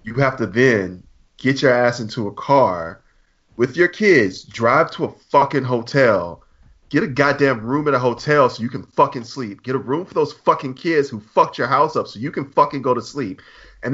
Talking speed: 215 wpm